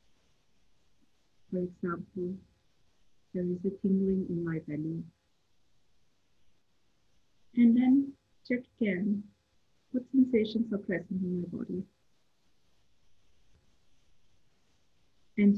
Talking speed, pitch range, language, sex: 80 wpm, 170-210 Hz, English, female